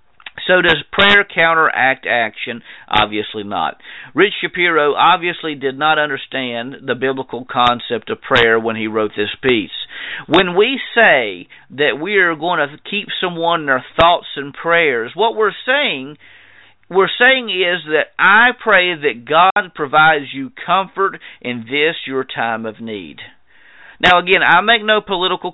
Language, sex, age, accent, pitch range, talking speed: English, male, 50-69, American, 130-180 Hz, 150 wpm